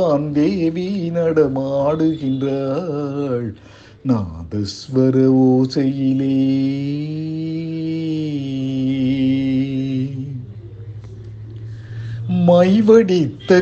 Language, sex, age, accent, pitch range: Tamil, male, 50-69, native, 140-210 Hz